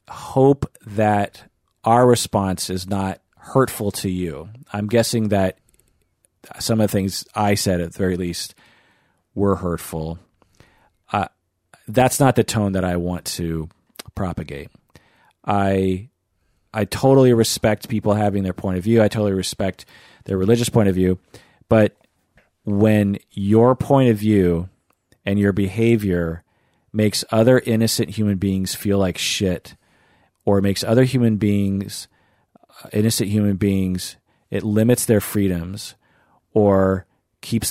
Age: 40-59